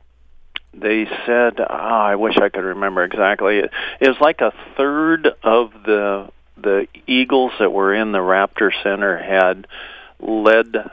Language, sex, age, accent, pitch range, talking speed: English, male, 50-69, American, 95-115 Hz, 145 wpm